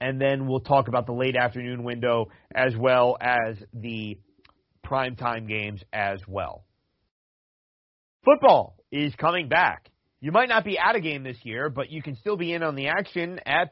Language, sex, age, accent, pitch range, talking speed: English, male, 40-59, American, 125-170 Hz, 175 wpm